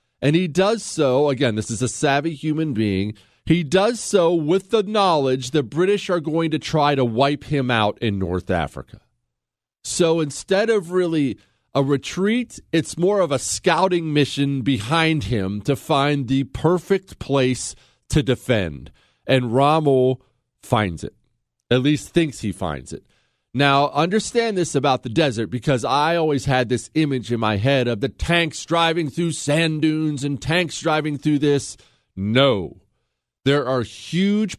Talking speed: 160 wpm